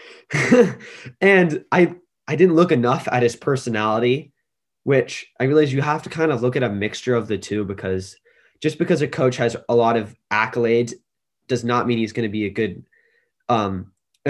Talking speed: 190 wpm